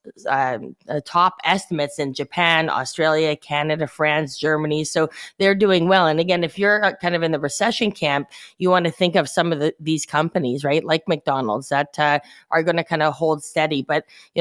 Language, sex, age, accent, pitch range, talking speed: English, female, 30-49, American, 155-180 Hz, 195 wpm